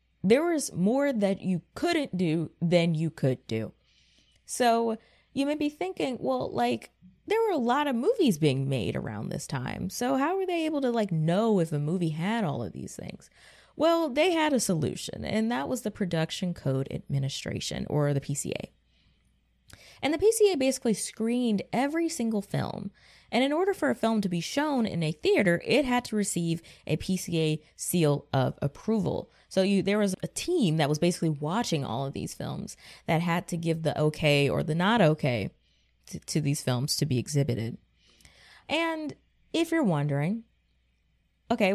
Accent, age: American, 20-39